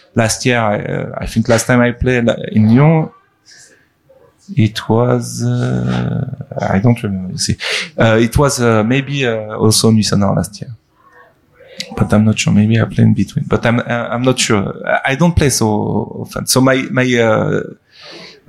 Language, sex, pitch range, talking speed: French, male, 105-125 Hz, 170 wpm